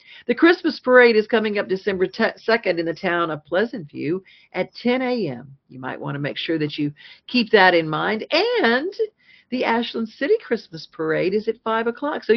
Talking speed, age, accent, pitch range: 190 wpm, 50-69, American, 170-225 Hz